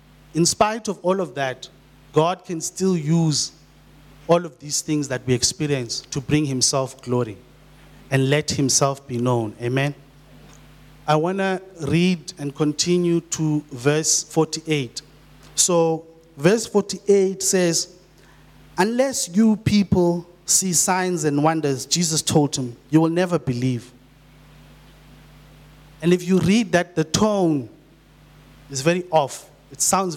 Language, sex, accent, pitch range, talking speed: English, male, South African, 140-175 Hz, 130 wpm